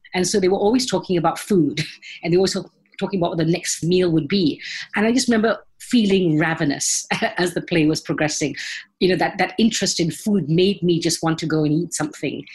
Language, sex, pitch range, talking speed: English, female, 160-190 Hz, 225 wpm